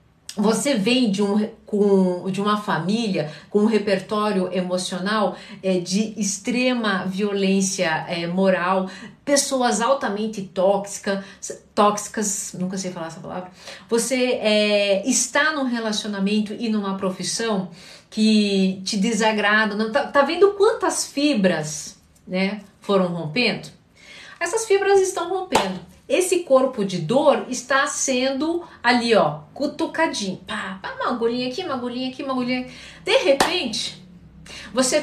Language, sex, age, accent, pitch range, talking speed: Portuguese, female, 50-69, Brazilian, 195-280 Hz, 125 wpm